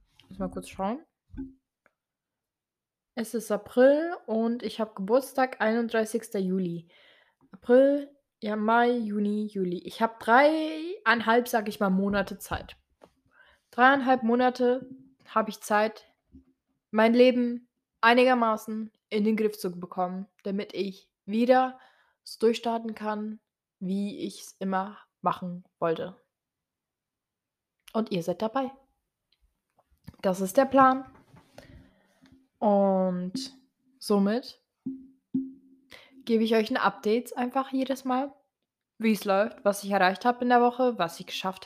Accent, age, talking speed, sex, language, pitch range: German, 20-39, 120 wpm, female, German, 210-265 Hz